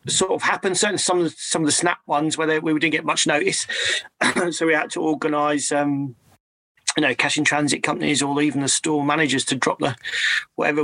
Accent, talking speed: British, 210 wpm